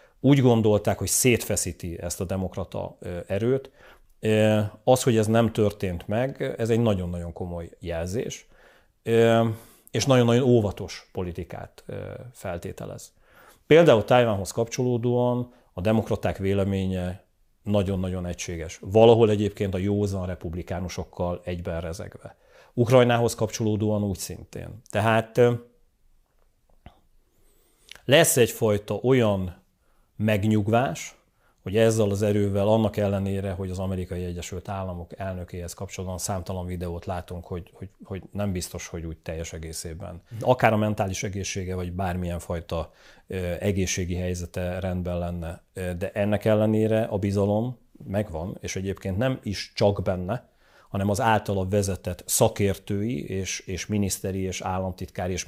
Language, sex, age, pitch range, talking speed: Hungarian, male, 40-59, 90-110 Hz, 115 wpm